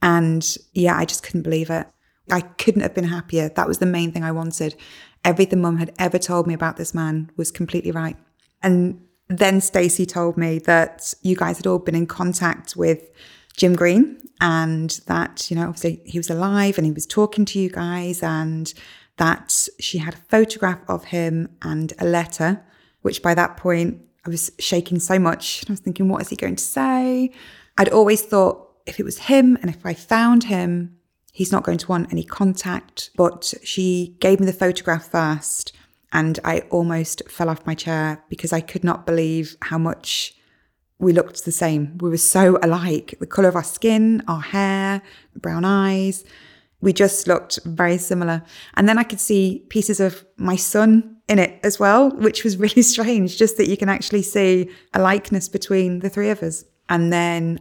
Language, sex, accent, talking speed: English, female, British, 195 wpm